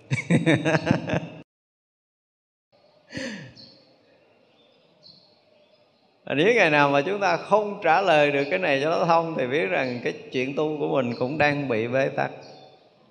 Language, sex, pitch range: Vietnamese, male, 115-150 Hz